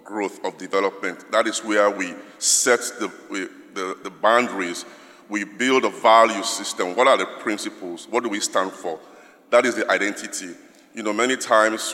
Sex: male